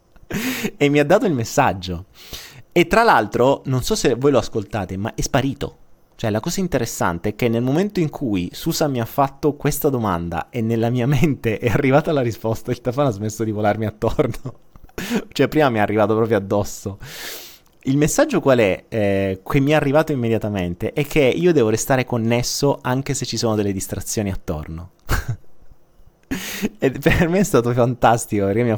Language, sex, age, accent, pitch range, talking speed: Italian, male, 30-49, native, 105-140 Hz, 180 wpm